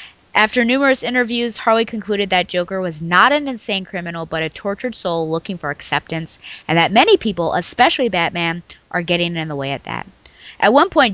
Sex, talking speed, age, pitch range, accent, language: female, 190 wpm, 20-39, 165-220 Hz, American, English